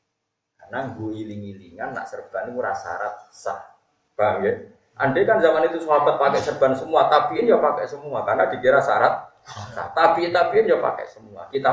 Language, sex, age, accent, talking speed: Indonesian, male, 20-39, native, 165 wpm